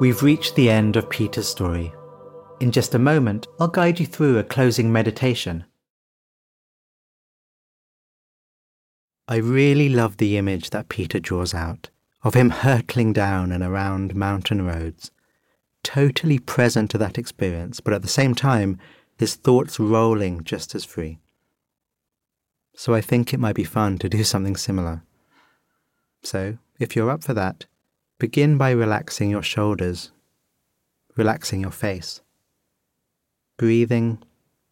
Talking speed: 135 wpm